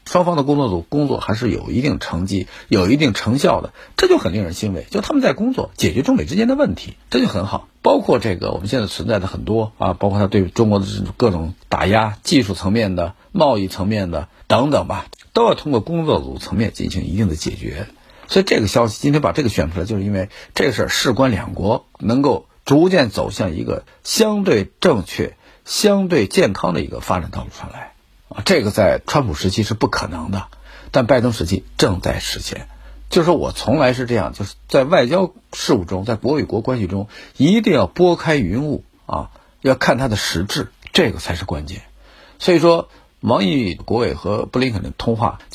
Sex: male